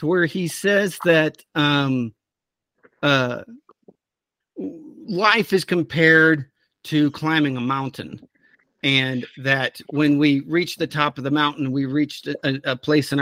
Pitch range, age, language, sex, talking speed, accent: 135-170 Hz, 50-69, English, male, 130 wpm, American